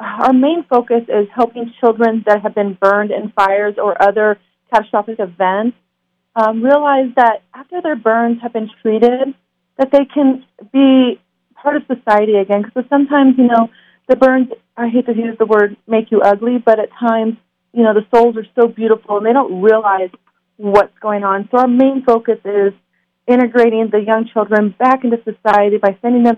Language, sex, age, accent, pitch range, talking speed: English, female, 30-49, American, 205-240 Hz, 180 wpm